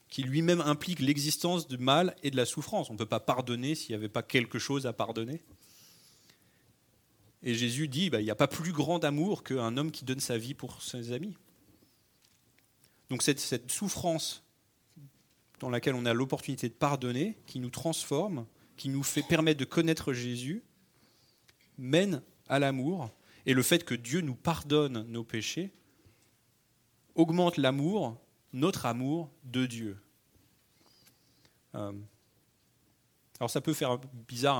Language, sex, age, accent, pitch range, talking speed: French, male, 30-49, French, 115-150 Hz, 150 wpm